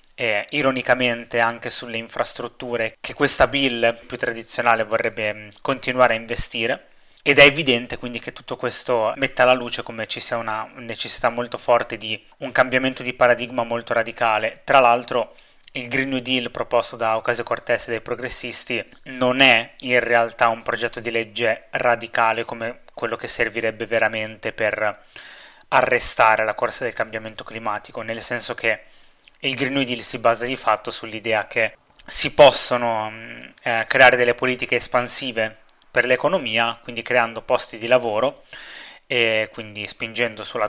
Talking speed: 150 wpm